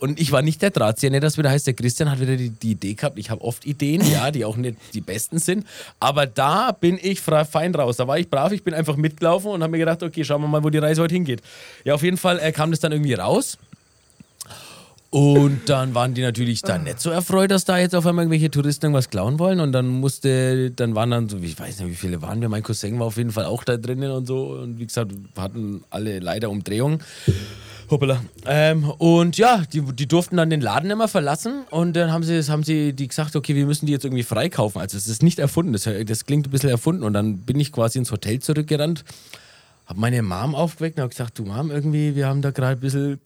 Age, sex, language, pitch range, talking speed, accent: 30-49, male, German, 115-155 Hz, 245 wpm, German